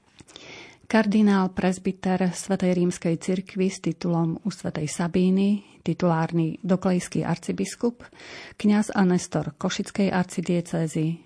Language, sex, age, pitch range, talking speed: Slovak, female, 30-49, 165-185 Hz, 95 wpm